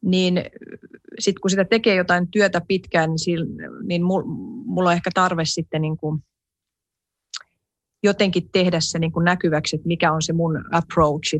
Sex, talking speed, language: female, 140 wpm, Finnish